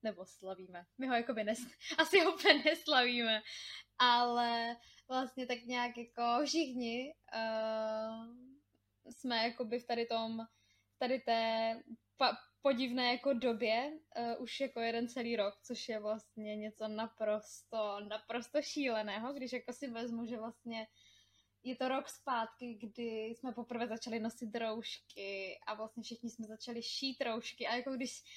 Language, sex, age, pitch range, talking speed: Czech, female, 10-29, 225-255 Hz, 125 wpm